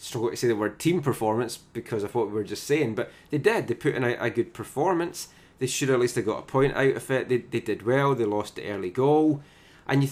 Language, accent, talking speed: English, British, 275 wpm